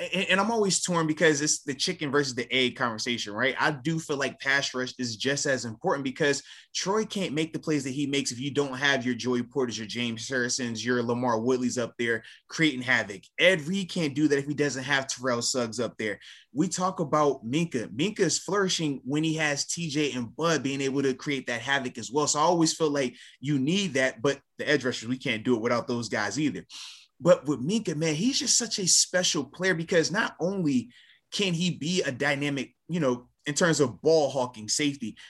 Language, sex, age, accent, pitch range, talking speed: English, male, 20-39, American, 130-170 Hz, 220 wpm